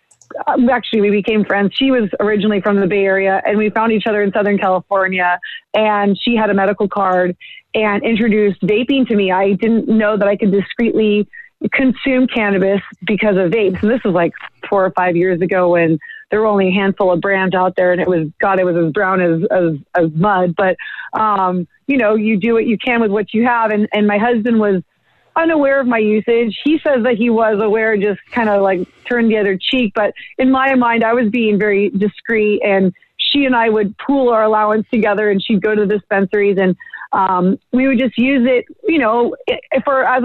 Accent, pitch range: American, 195-230 Hz